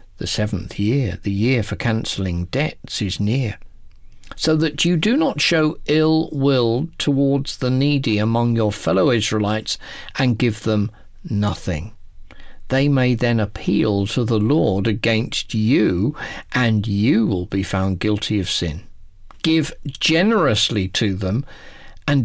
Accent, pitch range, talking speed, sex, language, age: British, 100-145 Hz, 140 wpm, male, English, 50-69